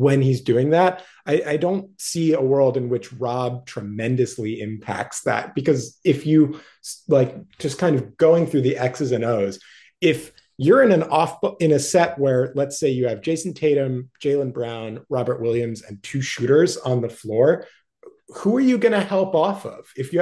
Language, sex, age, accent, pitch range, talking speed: English, male, 30-49, American, 125-155 Hz, 190 wpm